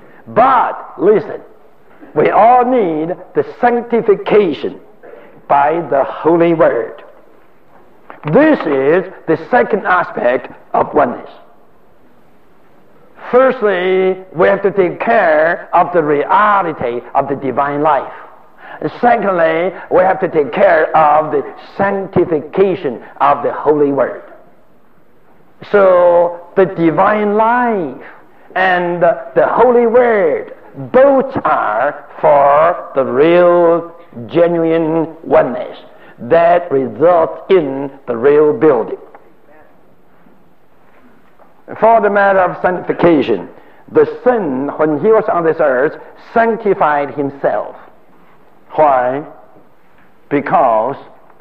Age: 60-79